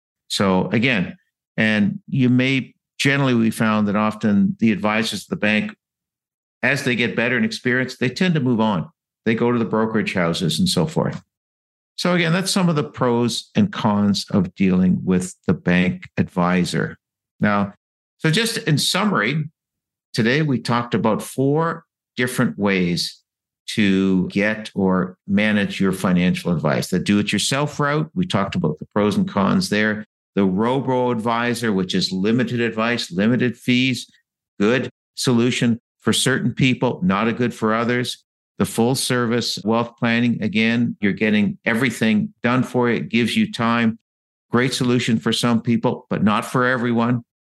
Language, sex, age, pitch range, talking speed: English, male, 50-69, 105-130 Hz, 155 wpm